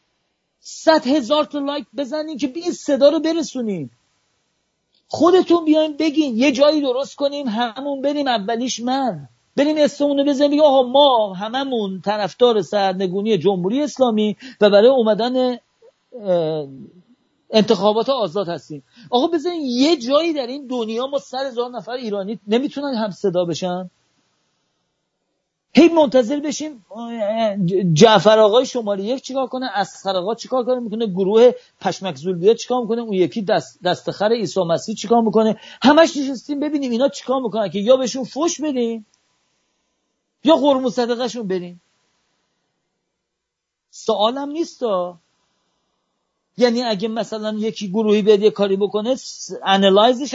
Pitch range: 200-280 Hz